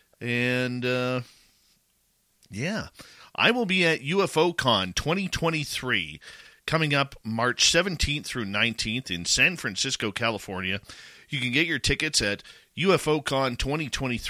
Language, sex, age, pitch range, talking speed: English, male, 40-59, 105-155 Hz, 115 wpm